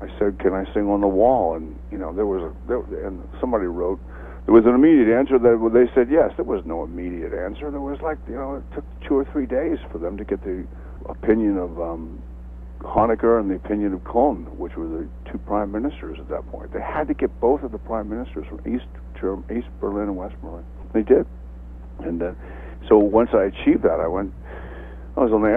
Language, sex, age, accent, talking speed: English, male, 60-79, American, 230 wpm